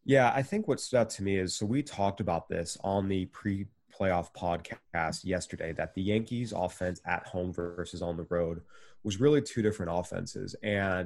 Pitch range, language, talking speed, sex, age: 90-105 Hz, English, 190 wpm, male, 20-39